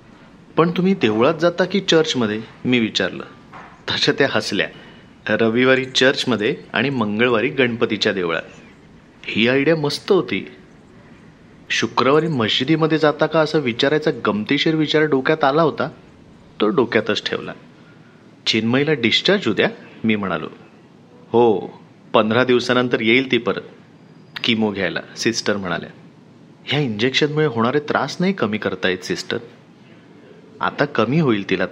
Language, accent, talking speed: Marathi, native, 115 wpm